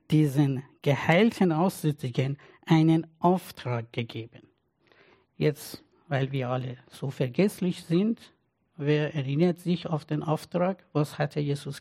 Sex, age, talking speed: male, 60-79, 110 wpm